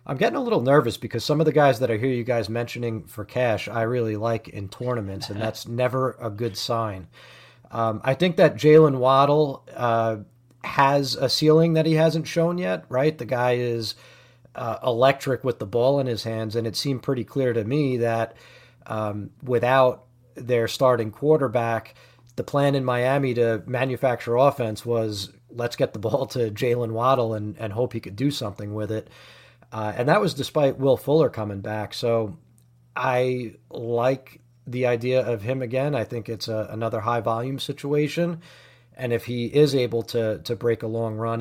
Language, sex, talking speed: English, male, 185 wpm